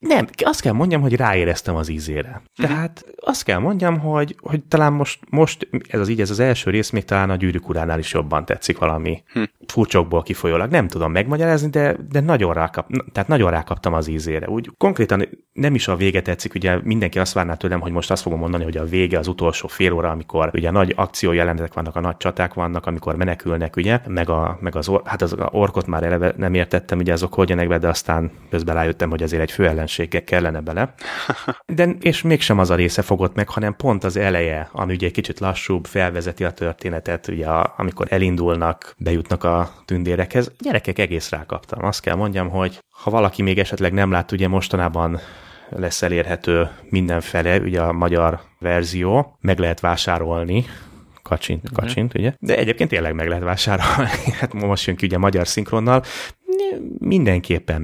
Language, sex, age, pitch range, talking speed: Hungarian, male, 30-49, 85-105 Hz, 180 wpm